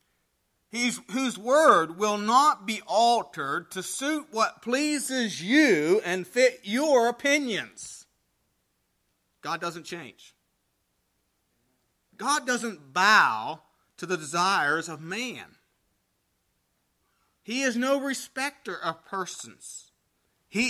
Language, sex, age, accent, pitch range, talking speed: English, male, 40-59, American, 170-245 Hz, 95 wpm